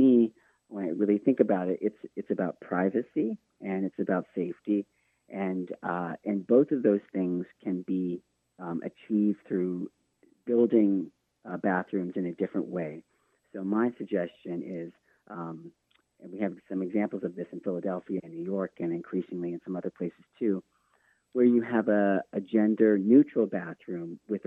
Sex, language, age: male, English, 40-59